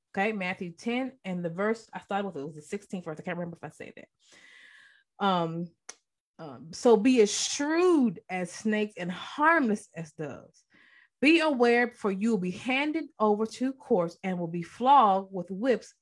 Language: English